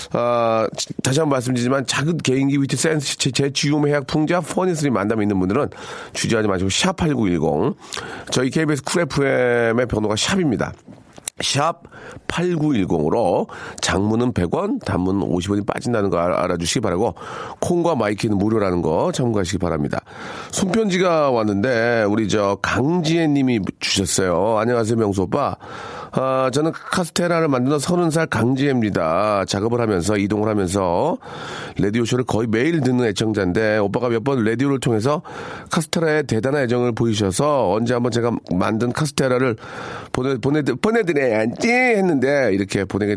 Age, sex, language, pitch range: 40-59, male, Korean, 105-150 Hz